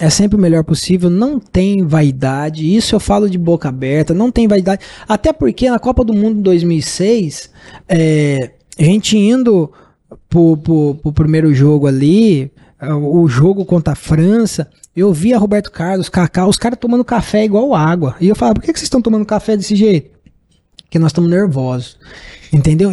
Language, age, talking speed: Portuguese, 20-39, 175 wpm